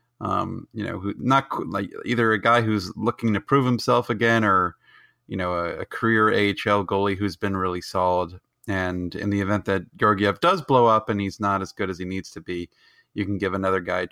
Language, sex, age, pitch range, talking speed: English, male, 30-49, 95-120 Hz, 220 wpm